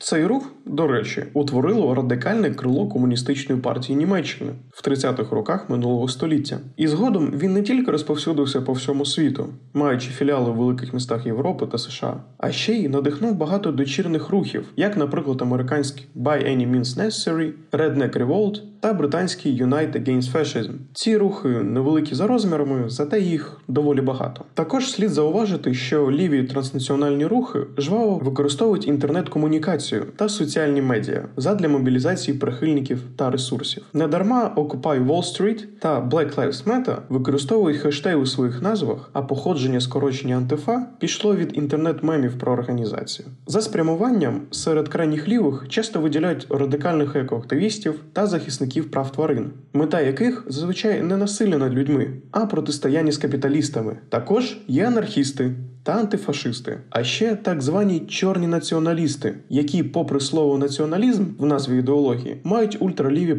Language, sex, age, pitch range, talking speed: Ukrainian, male, 20-39, 135-180 Hz, 140 wpm